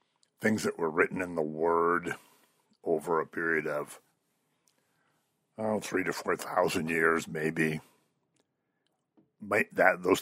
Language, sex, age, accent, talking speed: English, male, 60-79, American, 115 wpm